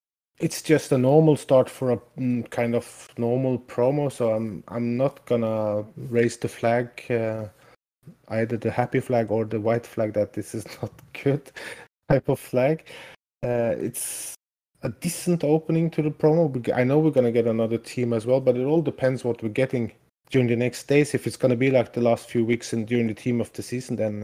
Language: English